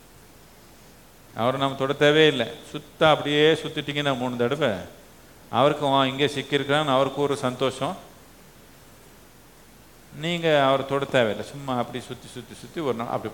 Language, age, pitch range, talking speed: Tamil, 50-69, 120-150 Hz, 130 wpm